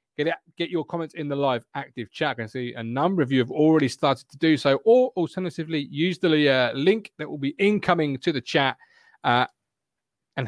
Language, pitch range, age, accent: English, 130-180 Hz, 30-49, British